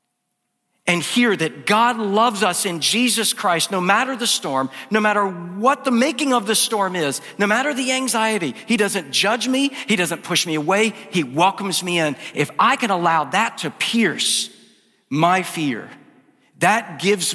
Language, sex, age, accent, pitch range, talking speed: English, male, 50-69, American, 155-210 Hz, 175 wpm